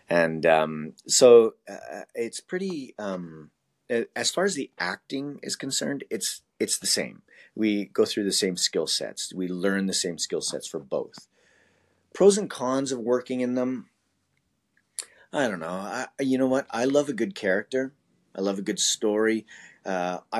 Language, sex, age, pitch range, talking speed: English, male, 30-49, 95-145 Hz, 170 wpm